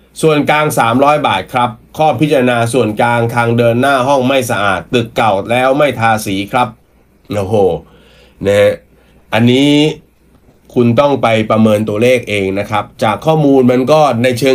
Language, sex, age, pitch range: Thai, male, 30-49, 105-125 Hz